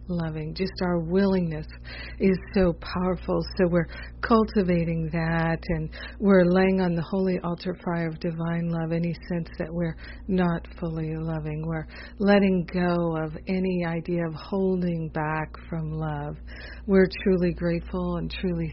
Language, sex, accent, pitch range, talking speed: English, female, American, 160-185 Hz, 145 wpm